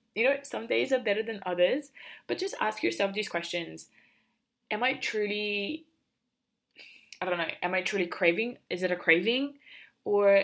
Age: 20-39